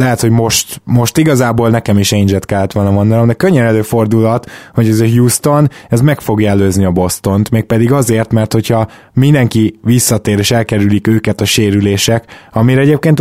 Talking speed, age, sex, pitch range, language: 175 wpm, 20-39, male, 105-125 Hz, Hungarian